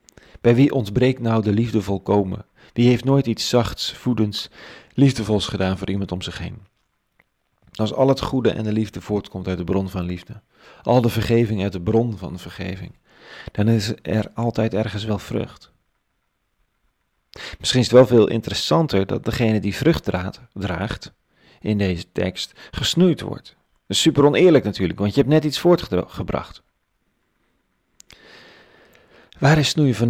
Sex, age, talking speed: male, 40-59, 160 wpm